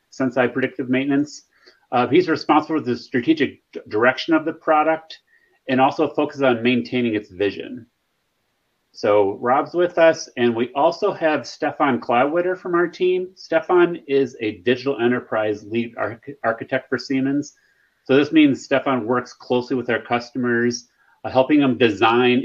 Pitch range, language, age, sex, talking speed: 120-155 Hz, German, 30-49, male, 145 wpm